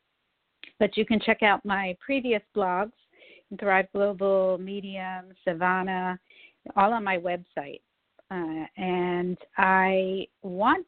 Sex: female